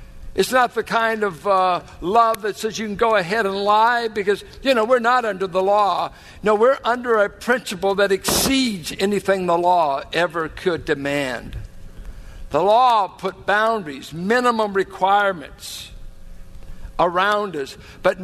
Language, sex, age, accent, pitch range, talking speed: English, male, 60-79, American, 170-230 Hz, 150 wpm